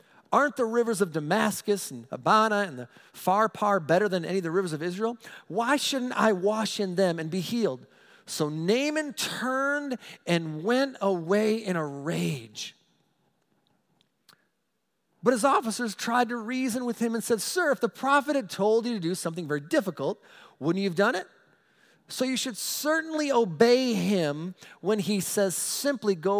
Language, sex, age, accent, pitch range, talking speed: English, male, 40-59, American, 150-220 Hz, 170 wpm